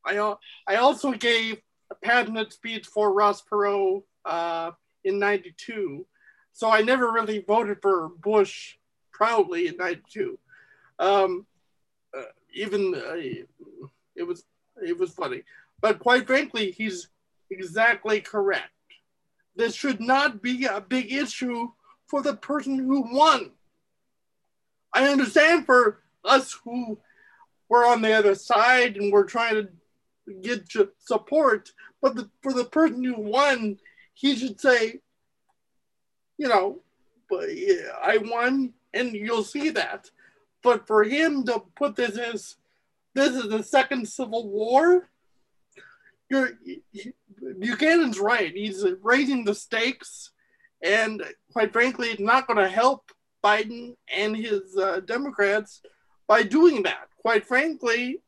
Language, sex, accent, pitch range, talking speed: English, male, American, 210-280 Hz, 125 wpm